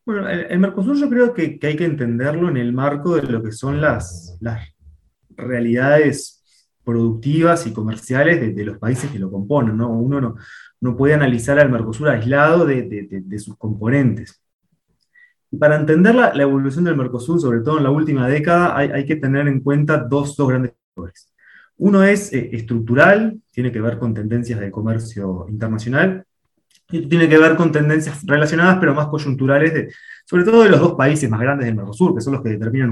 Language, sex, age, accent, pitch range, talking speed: Spanish, male, 20-39, Argentinian, 115-155 Hz, 190 wpm